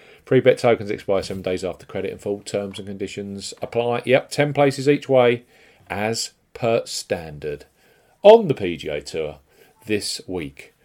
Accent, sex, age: British, male, 40-59